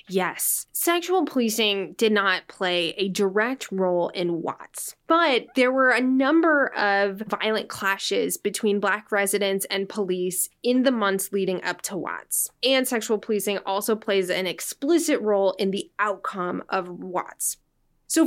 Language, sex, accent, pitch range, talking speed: English, female, American, 195-240 Hz, 150 wpm